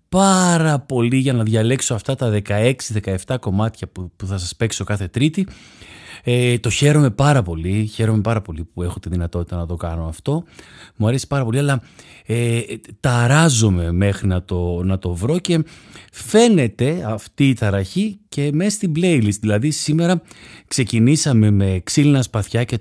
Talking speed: 150 wpm